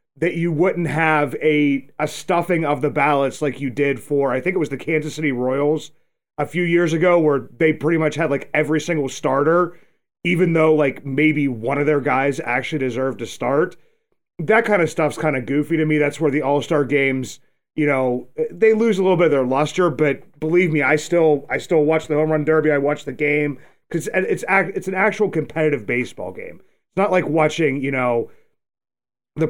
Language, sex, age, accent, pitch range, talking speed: English, male, 30-49, American, 145-180 Hz, 210 wpm